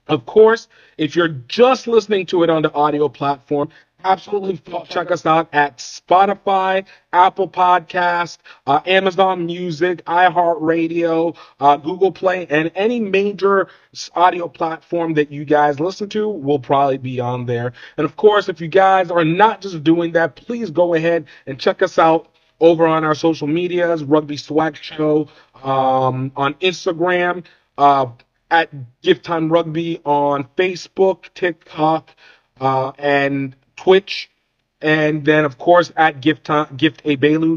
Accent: American